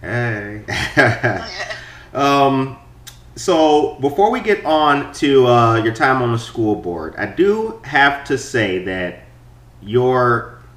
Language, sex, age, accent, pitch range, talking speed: English, male, 30-49, American, 90-135 Hz, 125 wpm